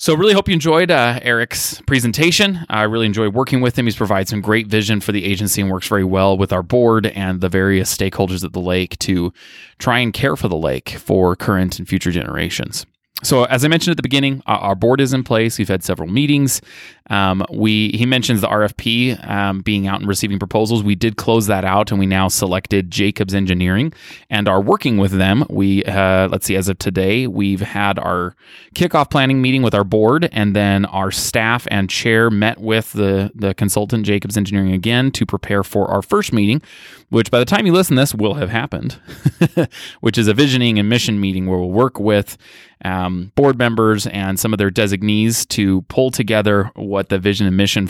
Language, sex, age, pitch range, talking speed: English, male, 20-39, 95-120 Hz, 210 wpm